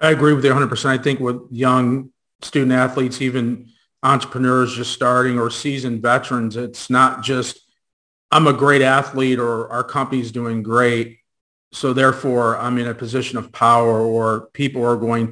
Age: 40-59